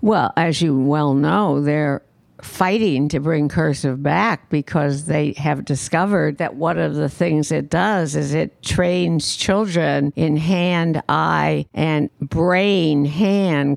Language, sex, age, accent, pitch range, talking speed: English, female, 60-79, American, 150-185 Hz, 130 wpm